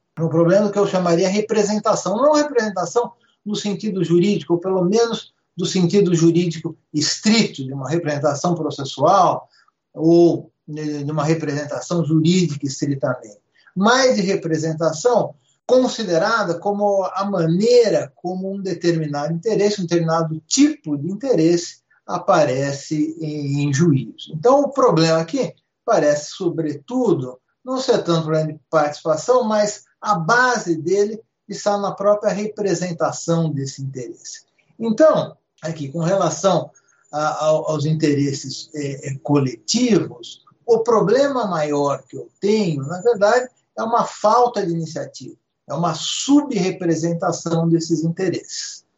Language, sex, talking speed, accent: Portuguese, male, 120 wpm, Brazilian